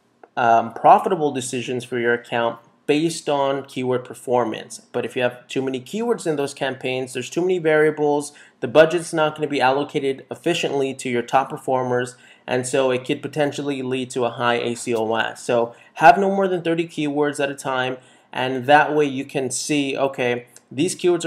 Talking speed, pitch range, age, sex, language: 185 wpm, 125-150 Hz, 20-39, male, English